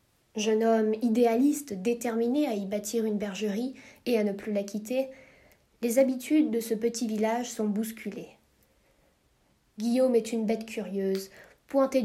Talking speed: 145 wpm